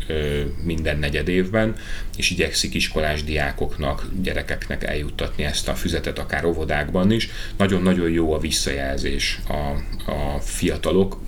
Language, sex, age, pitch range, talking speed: Hungarian, male, 30-49, 75-85 Hz, 115 wpm